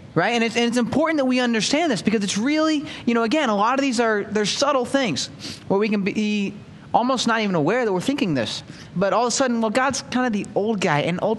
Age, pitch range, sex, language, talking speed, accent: 20-39, 155-235 Hz, male, English, 265 wpm, American